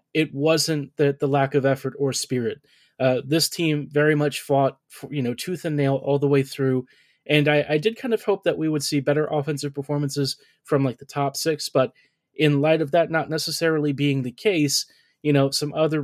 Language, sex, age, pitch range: English, male, 20-39, 135-150 Hz